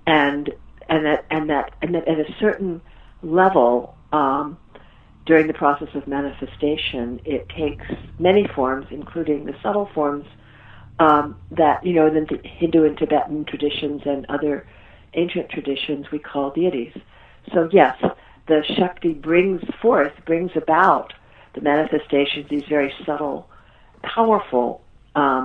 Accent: American